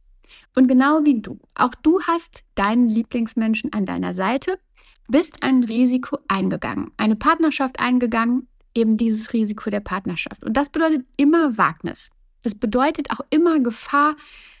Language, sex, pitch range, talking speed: German, female, 220-275 Hz, 140 wpm